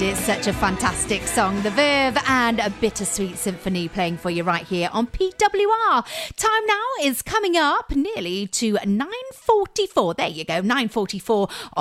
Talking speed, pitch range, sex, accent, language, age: 150 wpm, 190-290 Hz, female, British, English, 40-59